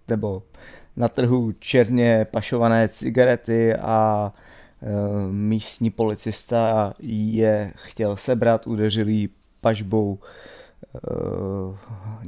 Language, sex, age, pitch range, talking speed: Czech, male, 30-49, 105-115 Hz, 80 wpm